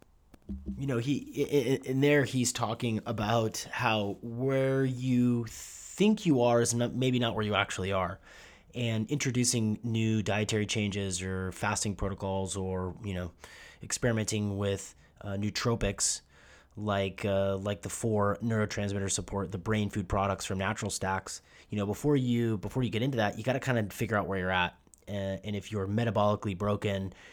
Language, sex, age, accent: English, male, 30-49, American